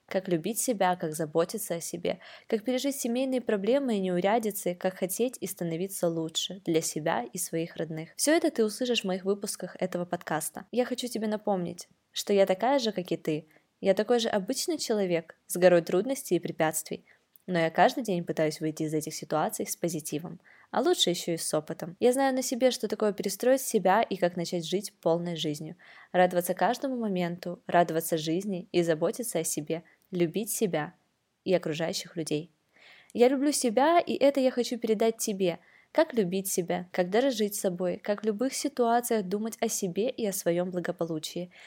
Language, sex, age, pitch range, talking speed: Russian, female, 20-39, 170-230 Hz, 180 wpm